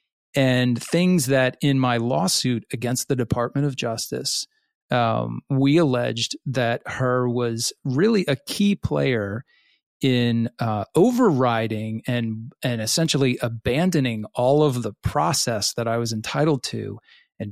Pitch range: 115-145 Hz